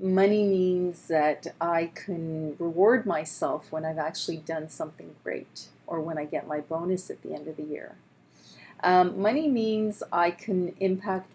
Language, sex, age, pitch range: English, female, 40-59, 160-195 Hz